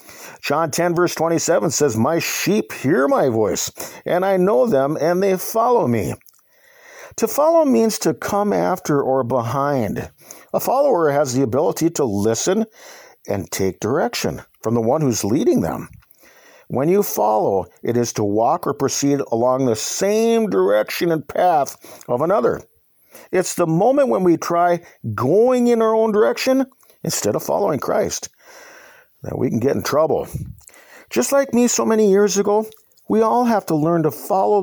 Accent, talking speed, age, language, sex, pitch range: American, 160 wpm, 50-69, English, male, 135-220 Hz